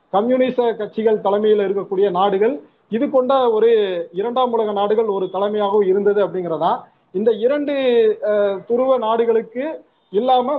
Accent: native